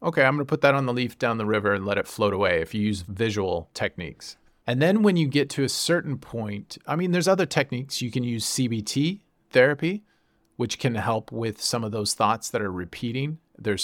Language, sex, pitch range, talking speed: English, male, 105-135 Hz, 225 wpm